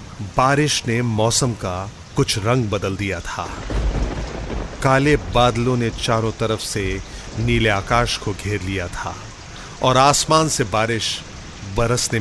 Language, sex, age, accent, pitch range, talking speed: Hindi, male, 40-59, native, 95-130 Hz, 130 wpm